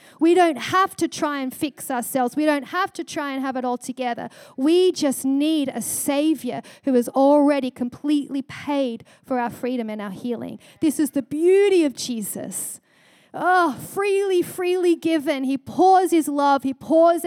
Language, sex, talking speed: English, female, 175 wpm